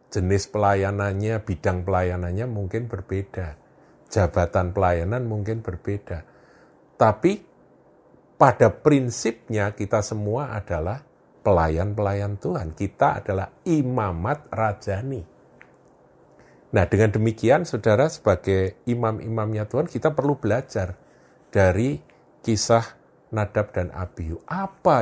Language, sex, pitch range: Indonesian, male, 90-115 Hz